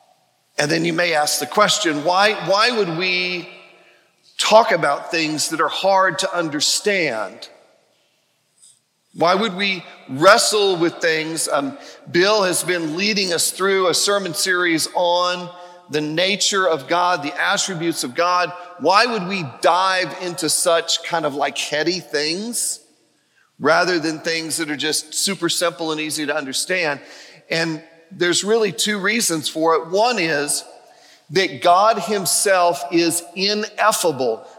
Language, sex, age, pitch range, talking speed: English, male, 40-59, 160-195 Hz, 140 wpm